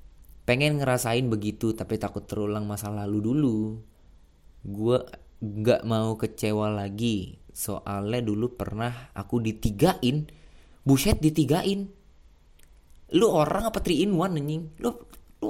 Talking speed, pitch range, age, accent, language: 110 wpm, 100-125 Hz, 20-39, native, Indonesian